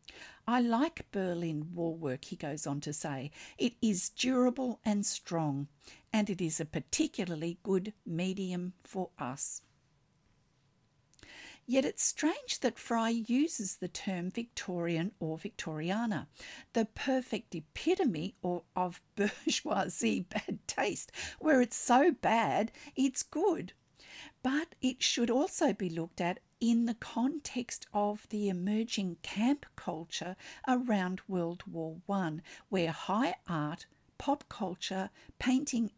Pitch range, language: 170-235 Hz, English